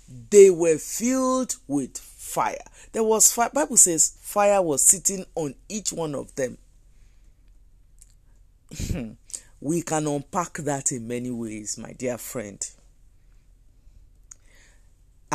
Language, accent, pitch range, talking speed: English, Nigerian, 135-195 Hz, 115 wpm